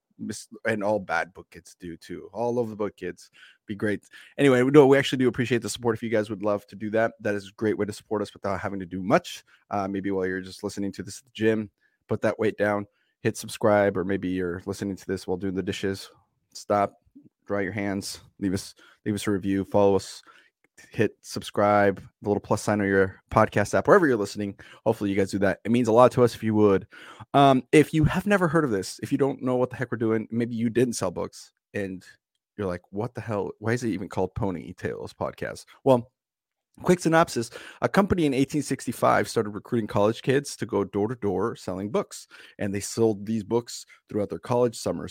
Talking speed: 225 wpm